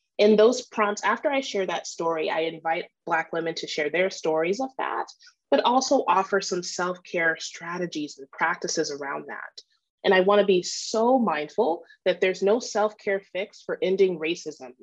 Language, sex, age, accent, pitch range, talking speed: English, female, 30-49, American, 175-245 Hz, 170 wpm